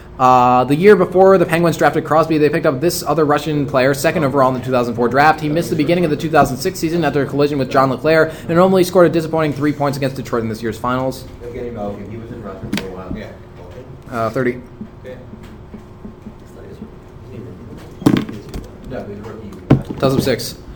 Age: 20-39